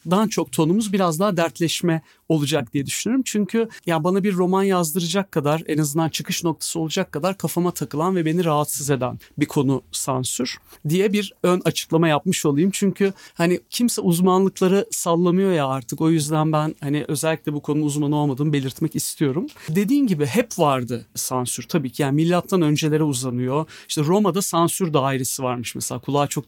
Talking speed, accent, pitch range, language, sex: 170 wpm, native, 145-185 Hz, Turkish, male